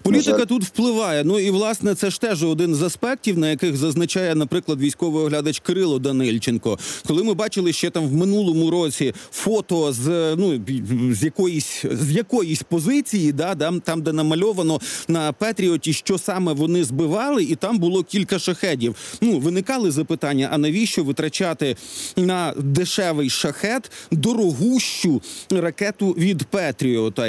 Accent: native